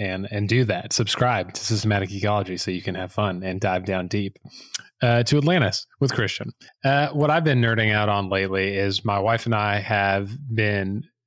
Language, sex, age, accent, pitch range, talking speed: English, male, 20-39, American, 100-120 Hz, 195 wpm